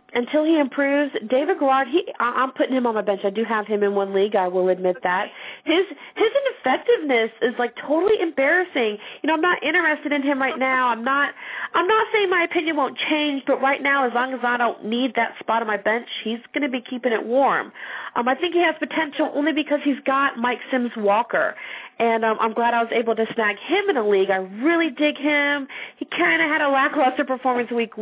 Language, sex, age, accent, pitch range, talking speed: English, female, 40-59, American, 210-290 Hz, 230 wpm